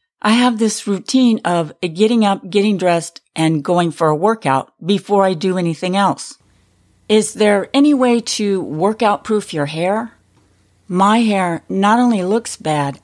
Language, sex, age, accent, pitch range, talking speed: English, female, 50-69, American, 170-215 Hz, 150 wpm